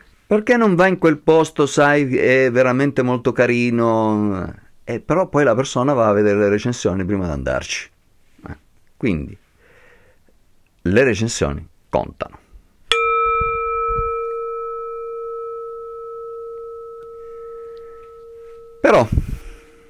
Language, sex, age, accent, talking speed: Italian, male, 50-69, native, 85 wpm